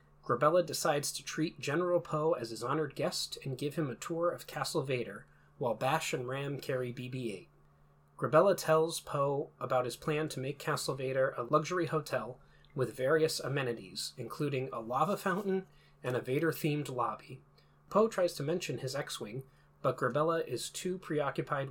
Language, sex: English, male